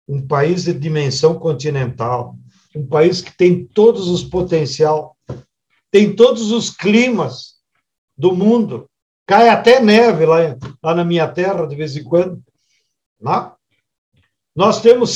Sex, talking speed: male, 130 wpm